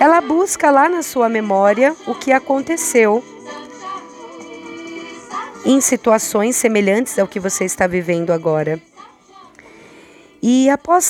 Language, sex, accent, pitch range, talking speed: Portuguese, female, Brazilian, 175-275 Hz, 110 wpm